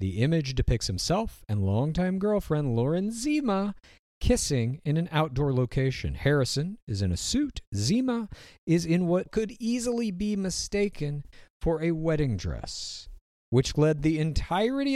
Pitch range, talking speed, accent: 115-175 Hz, 140 wpm, American